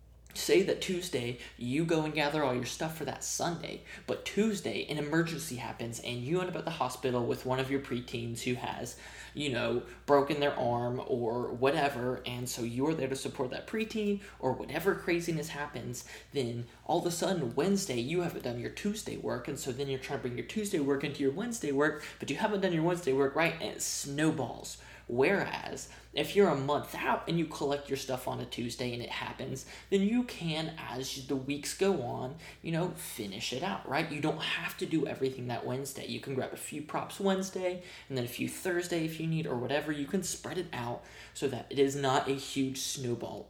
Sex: male